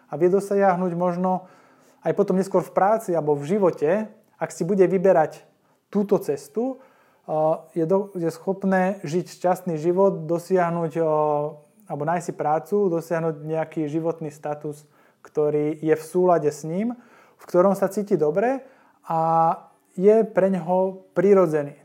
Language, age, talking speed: Slovak, 20-39, 130 wpm